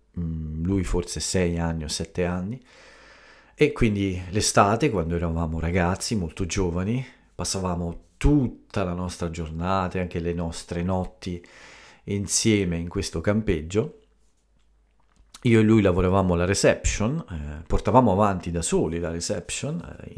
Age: 40-59